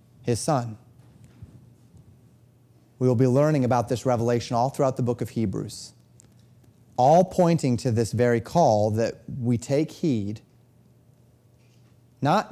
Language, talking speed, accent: English, 125 wpm, American